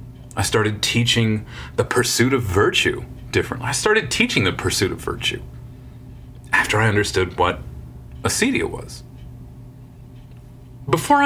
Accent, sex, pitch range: American, male, 115-140 Hz